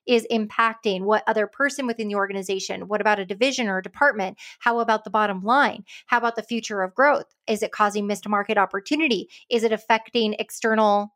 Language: English